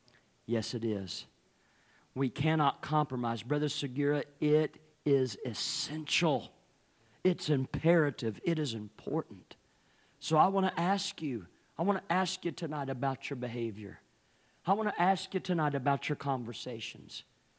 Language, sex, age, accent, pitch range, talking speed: English, male, 50-69, American, 115-170 Hz, 135 wpm